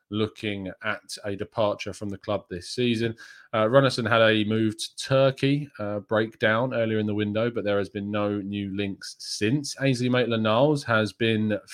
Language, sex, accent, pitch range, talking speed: English, male, British, 100-120 Hz, 175 wpm